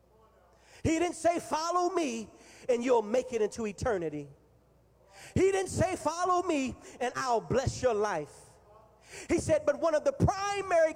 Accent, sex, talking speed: American, male, 155 wpm